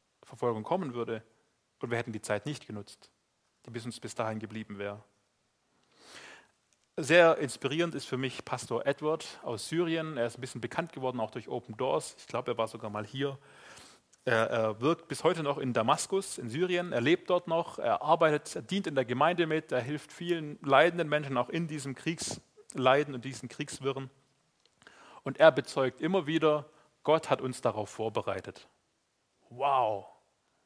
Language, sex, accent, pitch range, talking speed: German, male, German, 120-160 Hz, 170 wpm